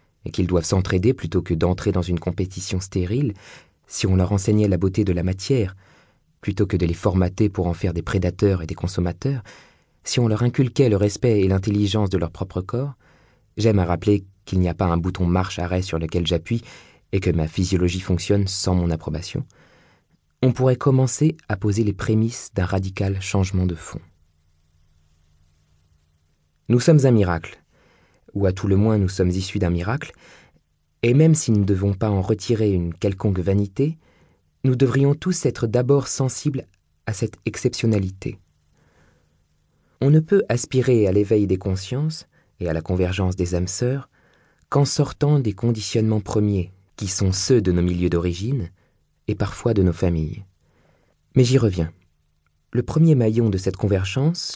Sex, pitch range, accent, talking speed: male, 90-120 Hz, French, 170 wpm